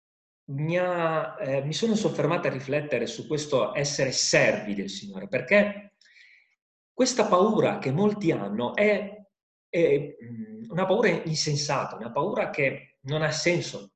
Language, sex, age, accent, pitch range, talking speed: Italian, male, 30-49, native, 140-200 Hz, 130 wpm